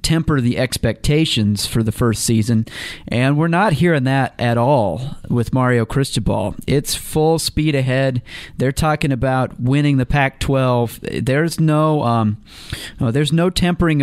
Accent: American